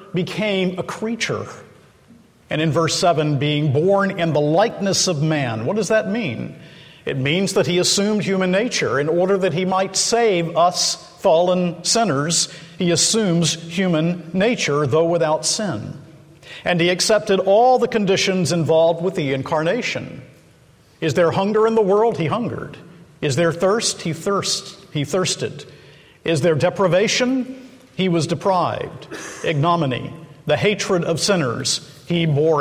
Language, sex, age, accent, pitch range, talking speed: English, male, 50-69, American, 150-185 Hz, 145 wpm